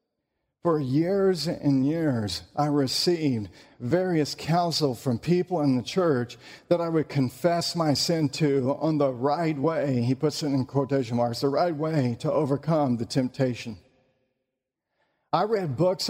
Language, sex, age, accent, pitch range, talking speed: English, male, 50-69, American, 130-180 Hz, 150 wpm